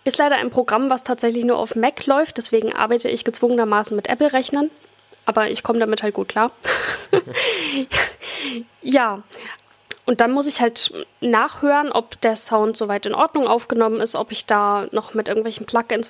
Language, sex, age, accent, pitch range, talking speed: German, female, 10-29, German, 215-250 Hz, 170 wpm